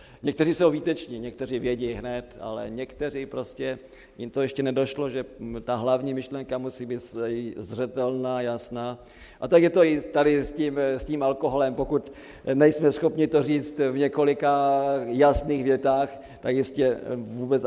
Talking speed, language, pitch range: 150 wpm, Slovak, 125-145 Hz